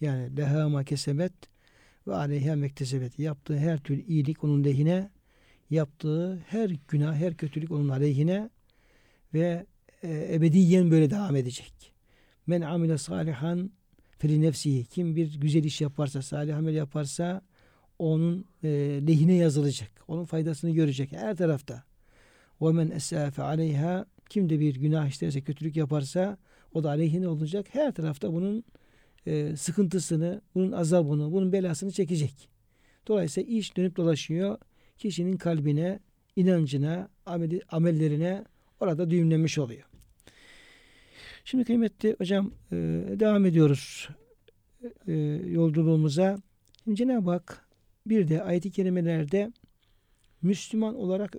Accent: native